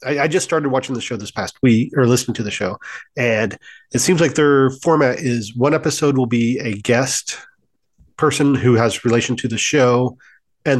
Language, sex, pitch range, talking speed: English, male, 120-145 Hz, 195 wpm